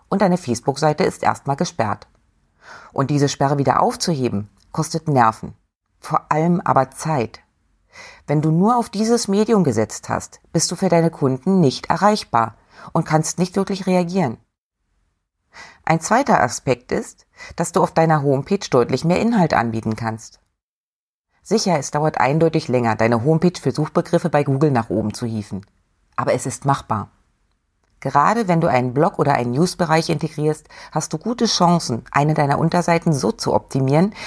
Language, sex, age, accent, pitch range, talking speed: German, female, 30-49, German, 115-175 Hz, 155 wpm